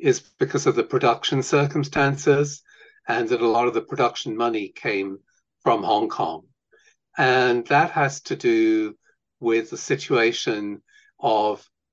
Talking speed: 135 wpm